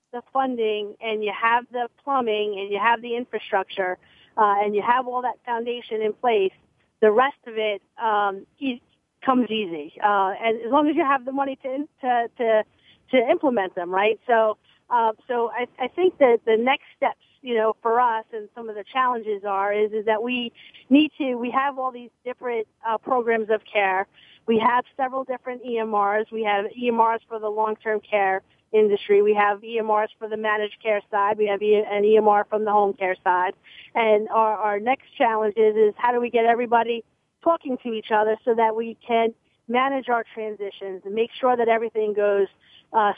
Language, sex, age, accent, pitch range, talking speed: English, female, 40-59, American, 210-245 Hz, 195 wpm